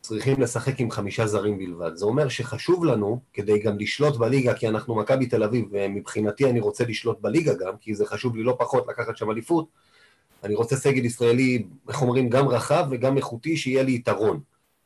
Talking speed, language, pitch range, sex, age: 185 wpm, Hebrew, 120-150 Hz, male, 30-49